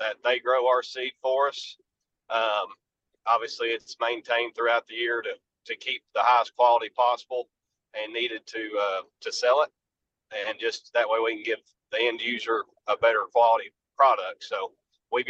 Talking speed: 175 wpm